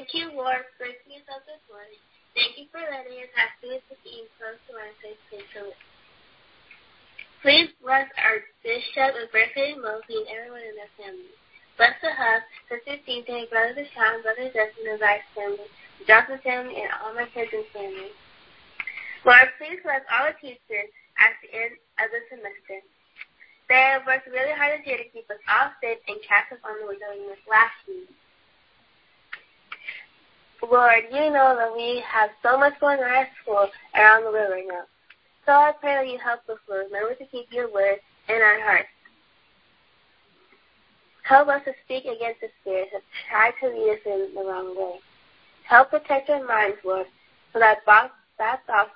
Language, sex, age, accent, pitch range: Japanese, female, 10-29, American, 210-275 Hz